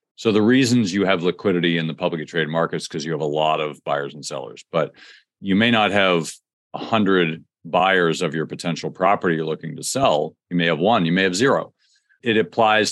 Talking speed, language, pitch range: 210 wpm, English, 90-120 Hz